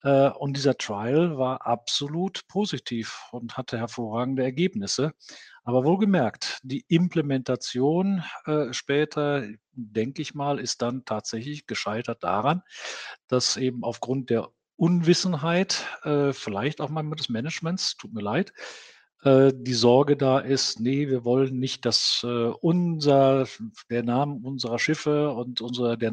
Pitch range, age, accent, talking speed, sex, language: 120-150 Hz, 50-69, German, 125 wpm, male, German